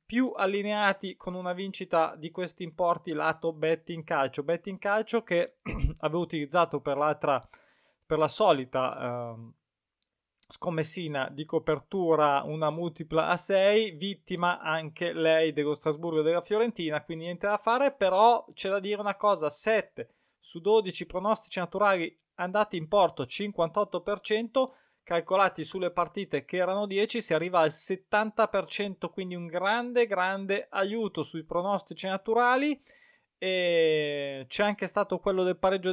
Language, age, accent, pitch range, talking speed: Italian, 20-39, native, 160-205 Hz, 135 wpm